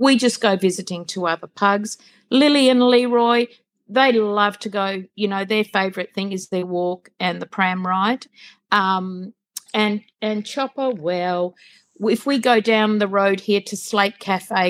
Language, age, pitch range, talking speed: English, 50-69, 195-250 Hz, 165 wpm